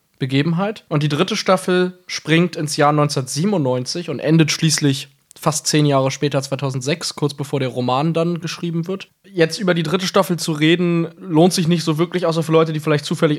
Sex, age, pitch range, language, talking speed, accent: male, 20-39, 140-175 Hz, German, 190 wpm, German